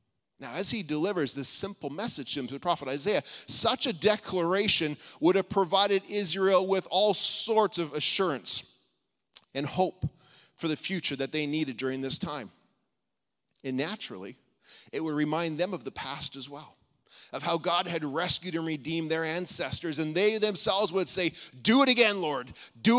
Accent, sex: American, male